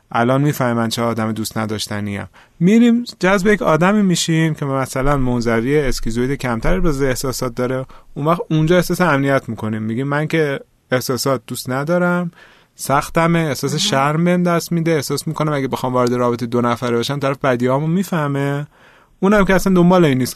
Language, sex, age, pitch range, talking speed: Persian, male, 30-49, 120-165 Hz, 155 wpm